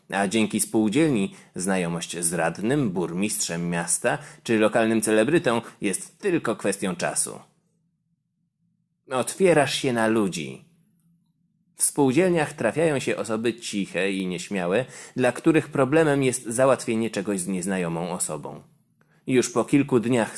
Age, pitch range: 20-39, 100-160 Hz